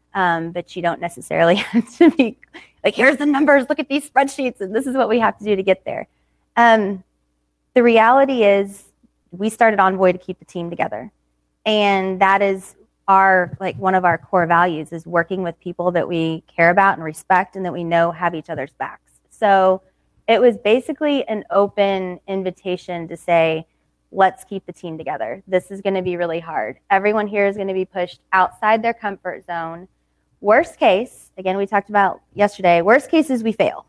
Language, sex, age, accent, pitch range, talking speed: English, female, 20-39, American, 180-215 Hz, 195 wpm